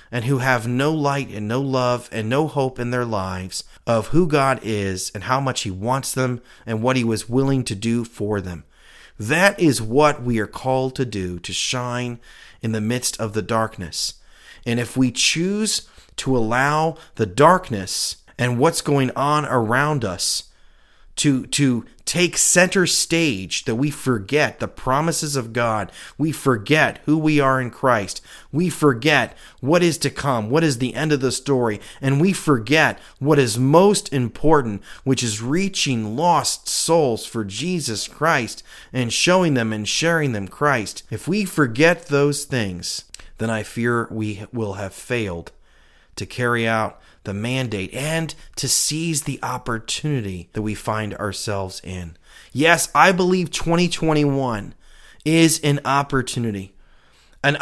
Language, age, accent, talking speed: English, 30-49, American, 160 wpm